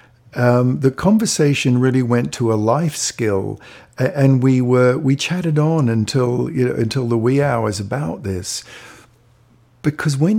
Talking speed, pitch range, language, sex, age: 150 wpm, 110-135 Hz, English, male, 50-69